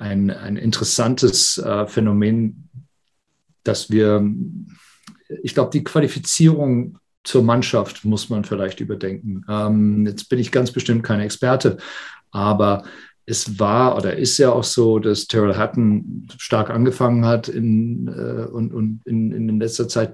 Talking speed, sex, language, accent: 140 wpm, male, German, German